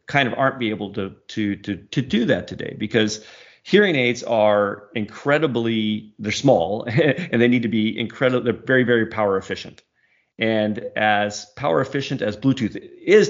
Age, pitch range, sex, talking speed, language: 40-59, 105-125 Hz, male, 165 wpm, German